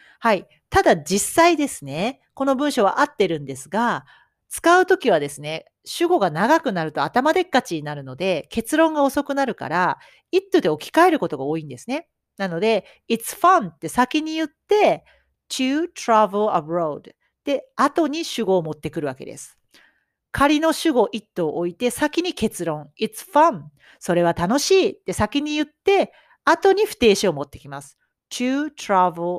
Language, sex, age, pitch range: Japanese, female, 40-59, 180-295 Hz